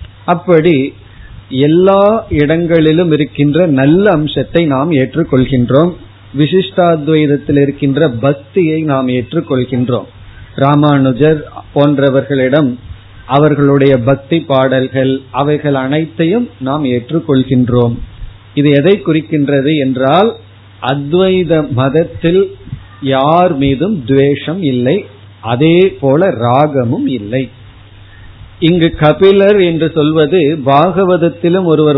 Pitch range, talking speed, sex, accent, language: 130-160 Hz, 80 wpm, male, native, Tamil